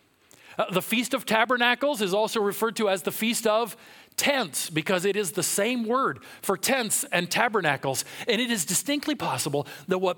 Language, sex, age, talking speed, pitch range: English, male, 40-59, 185 wpm, 150-240 Hz